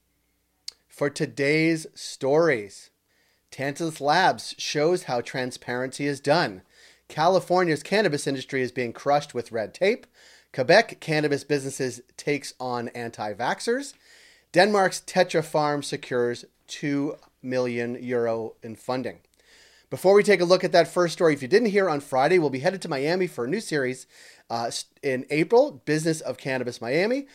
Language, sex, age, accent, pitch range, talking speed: English, male, 30-49, American, 120-165 Hz, 145 wpm